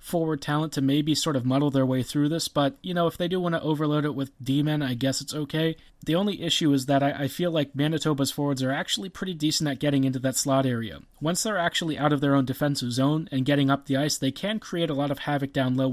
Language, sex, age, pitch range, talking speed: English, male, 30-49, 135-155 Hz, 270 wpm